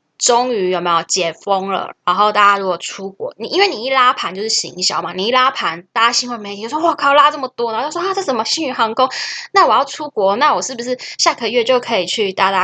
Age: 10-29